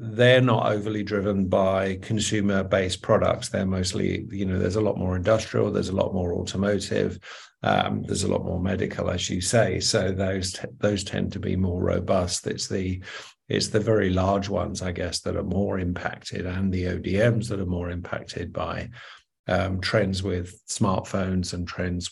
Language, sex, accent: English, male, British